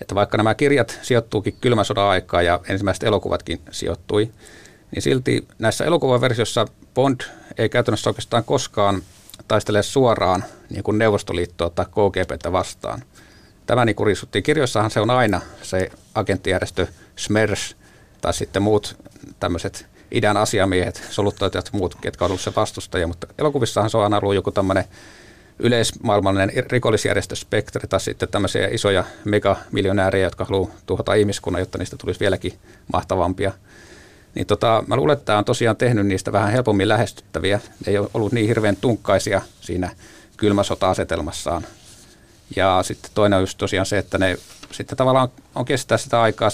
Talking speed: 145 wpm